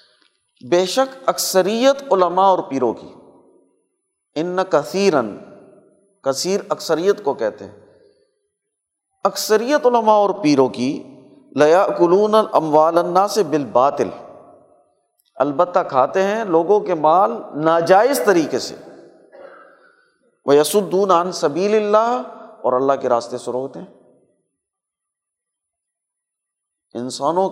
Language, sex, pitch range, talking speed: Urdu, male, 180-250 Hz, 100 wpm